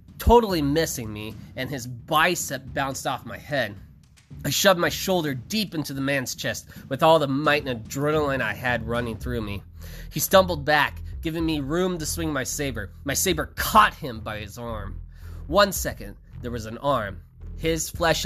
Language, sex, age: English, male, 20-39